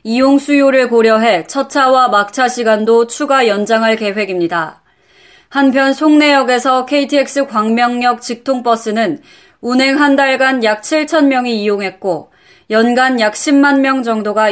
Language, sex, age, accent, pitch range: Korean, female, 20-39, native, 220-265 Hz